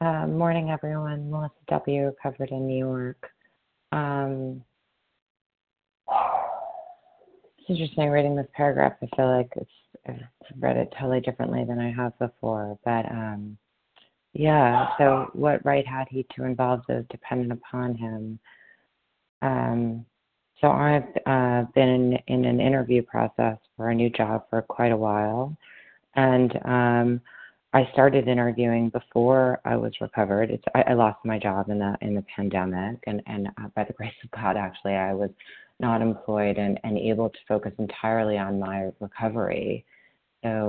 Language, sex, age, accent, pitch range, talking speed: English, female, 30-49, American, 100-130 Hz, 150 wpm